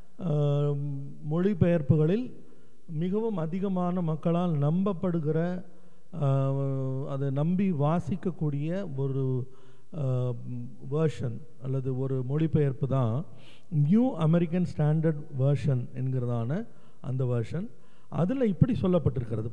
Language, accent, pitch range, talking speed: Tamil, native, 140-195 Hz, 75 wpm